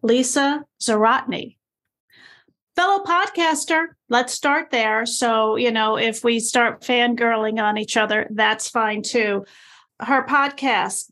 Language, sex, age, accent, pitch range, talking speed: English, female, 40-59, American, 230-290 Hz, 120 wpm